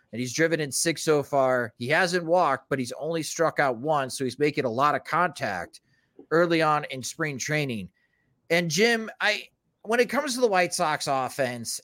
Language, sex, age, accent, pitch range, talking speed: English, male, 30-49, American, 130-170 Hz, 200 wpm